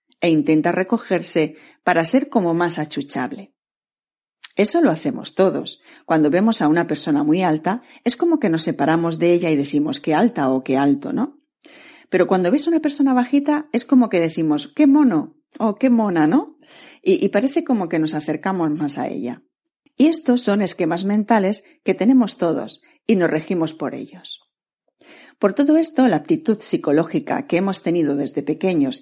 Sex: female